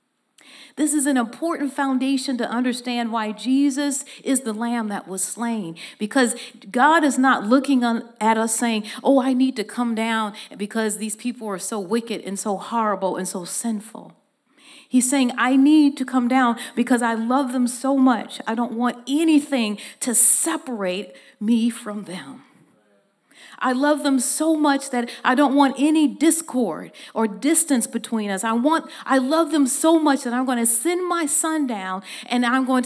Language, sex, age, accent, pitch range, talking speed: English, female, 40-59, American, 220-275 Hz, 175 wpm